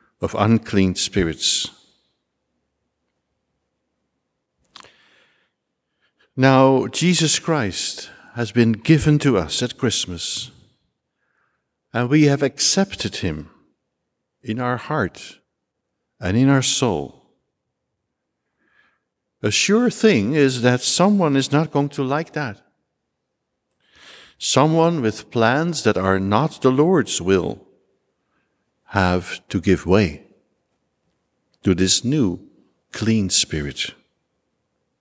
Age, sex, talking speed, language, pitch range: 60-79, male, 95 wpm, English, 110-155 Hz